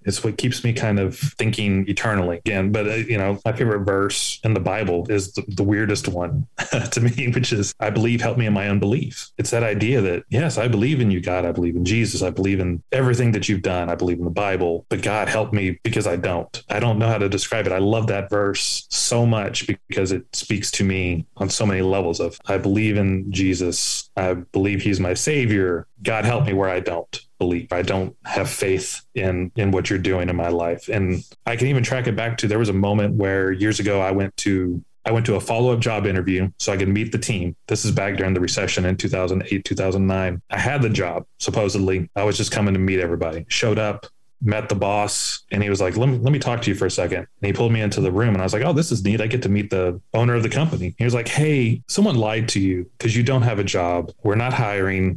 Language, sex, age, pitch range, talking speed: English, male, 30-49, 95-115 Hz, 250 wpm